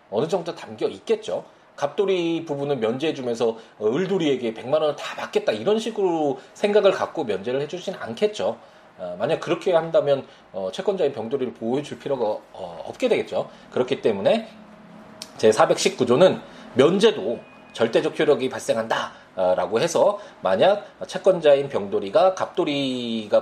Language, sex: Korean, male